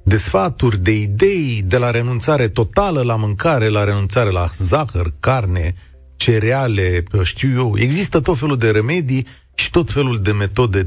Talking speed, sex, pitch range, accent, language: 150 wpm, male, 100-135 Hz, native, Romanian